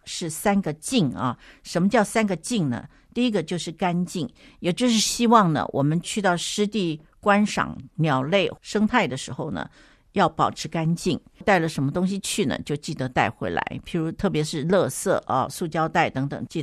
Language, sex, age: Chinese, female, 60-79